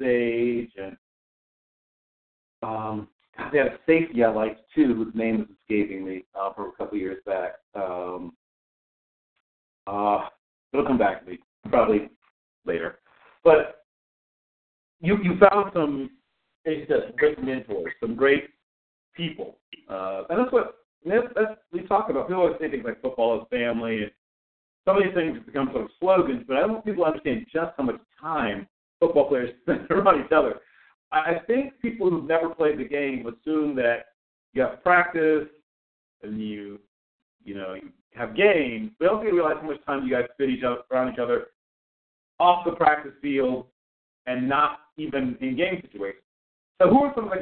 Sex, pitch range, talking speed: male, 115-175 Hz, 170 wpm